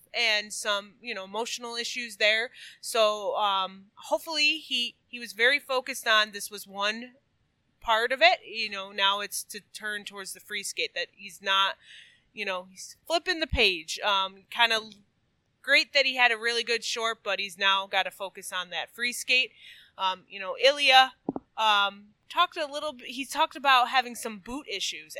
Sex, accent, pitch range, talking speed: female, American, 200-265 Hz, 185 wpm